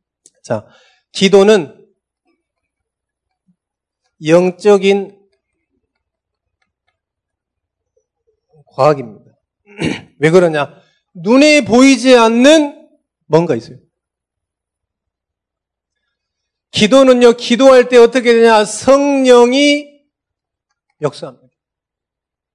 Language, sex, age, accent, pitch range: Korean, male, 40-59, native, 160-255 Hz